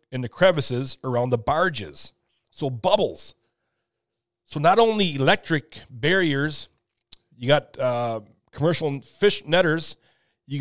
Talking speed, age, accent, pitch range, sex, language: 115 wpm, 40-59, American, 120-160 Hz, male, English